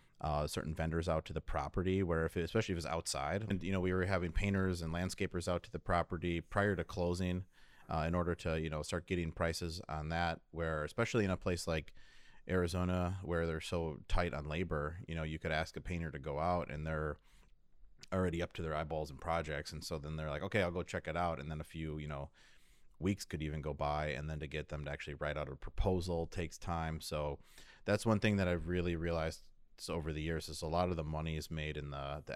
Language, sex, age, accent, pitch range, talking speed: English, male, 30-49, American, 75-90 Hz, 245 wpm